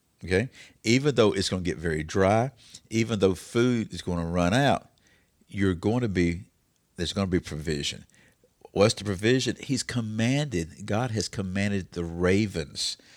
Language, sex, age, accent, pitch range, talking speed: English, male, 50-69, American, 85-115 Hz, 165 wpm